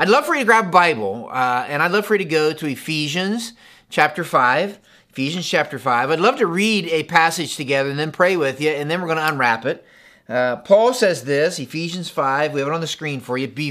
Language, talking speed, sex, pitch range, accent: English, 250 wpm, male, 125-180 Hz, American